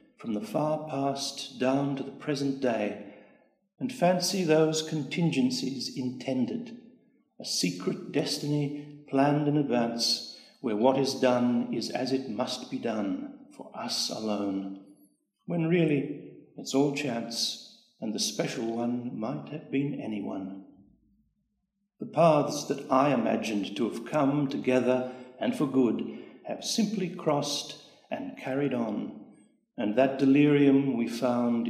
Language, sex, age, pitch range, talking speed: English, male, 60-79, 120-145 Hz, 130 wpm